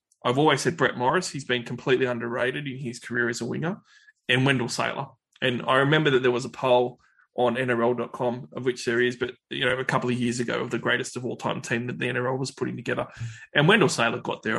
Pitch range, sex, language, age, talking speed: 125-140 Hz, male, English, 20-39, 240 wpm